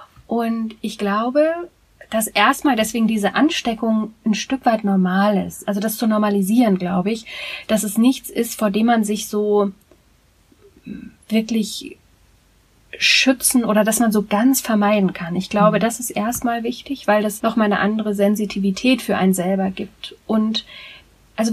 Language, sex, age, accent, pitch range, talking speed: German, female, 30-49, German, 210-250 Hz, 155 wpm